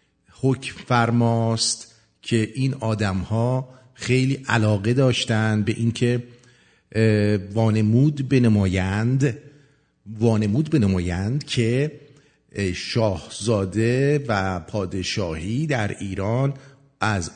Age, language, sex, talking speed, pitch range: 50-69, English, male, 75 wpm, 100-135 Hz